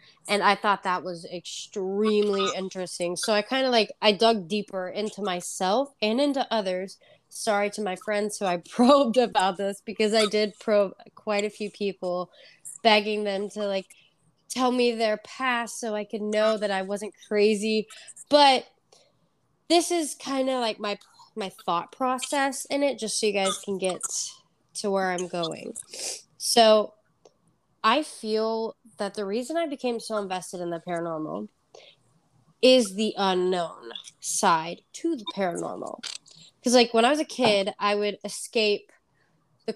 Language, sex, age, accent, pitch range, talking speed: English, female, 20-39, American, 185-225 Hz, 160 wpm